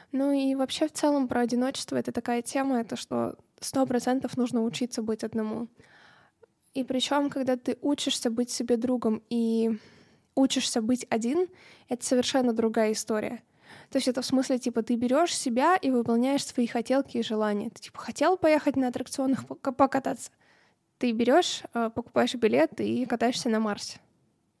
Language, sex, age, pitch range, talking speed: Russian, female, 20-39, 230-265 Hz, 155 wpm